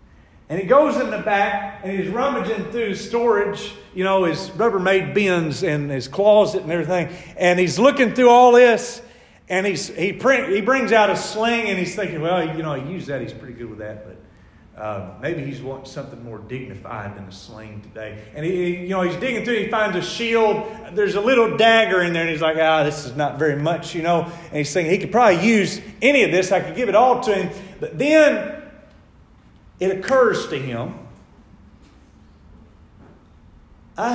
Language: English